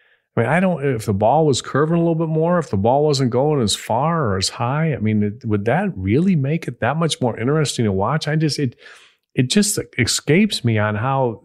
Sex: male